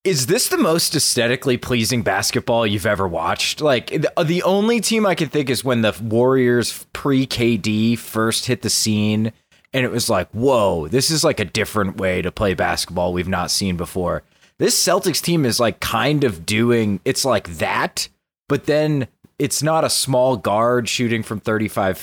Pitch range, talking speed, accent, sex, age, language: 105-130 Hz, 180 wpm, American, male, 20-39, English